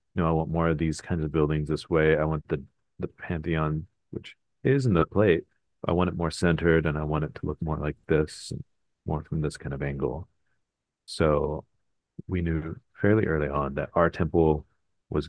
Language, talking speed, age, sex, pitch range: English, 210 wpm, 40-59, male, 75-85 Hz